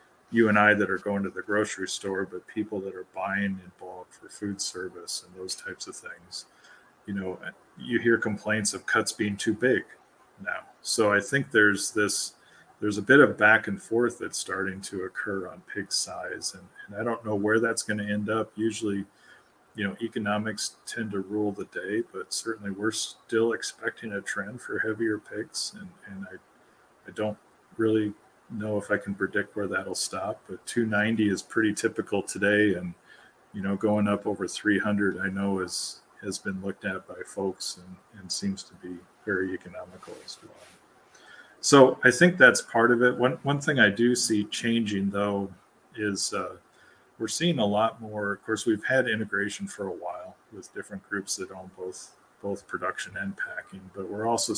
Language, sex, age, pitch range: English, male, 40-59, 100-115 Hz